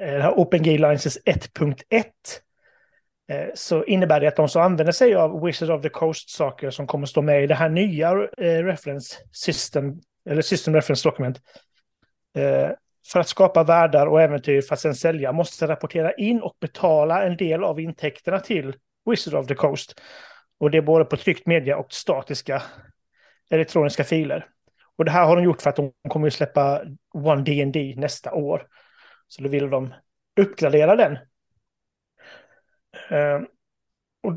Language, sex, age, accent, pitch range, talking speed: Swedish, male, 30-49, native, 150-185 Hz, 155 wpm